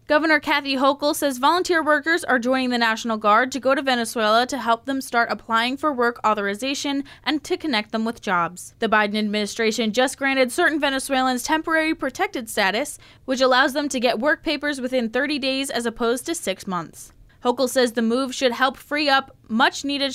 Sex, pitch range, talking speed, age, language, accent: female, 225-280 Hz, 190 wpm, 10-29, English, American